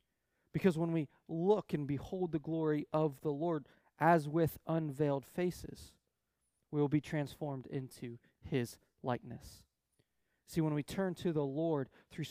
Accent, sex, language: American, male, English